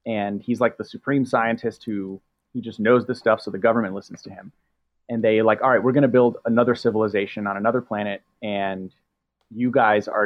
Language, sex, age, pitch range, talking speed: English, male, 30-49, 105-125 Hz, 210 wpm